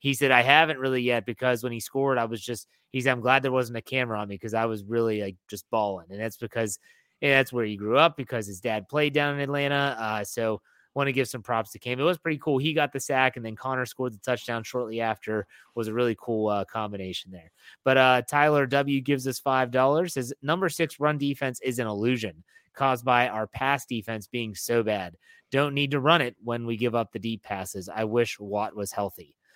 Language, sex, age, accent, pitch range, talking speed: English, male, 30-49, American, 110-140 Hz, 240 wpm